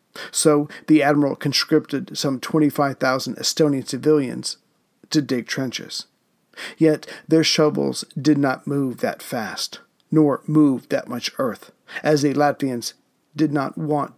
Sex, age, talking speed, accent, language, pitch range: male, 40-59, 125 wpm, American, English, 135-155 Hz